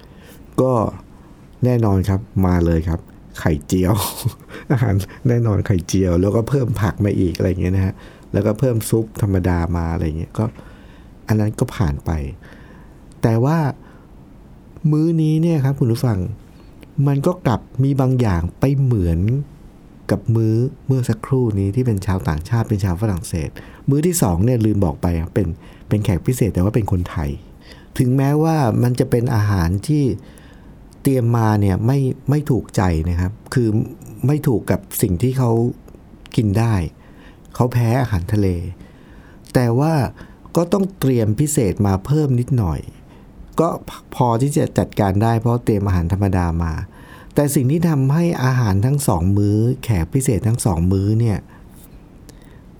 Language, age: Thai, 60-79